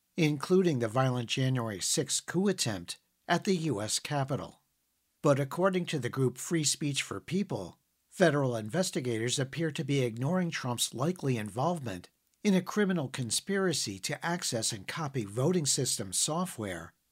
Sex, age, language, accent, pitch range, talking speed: male, 50-69, English, American, 115-165 Hz, 140 wpm